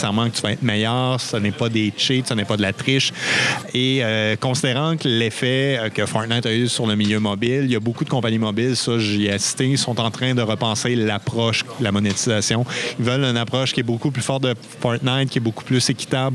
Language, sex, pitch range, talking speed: French, male, 110-130 Hz, 240 wpm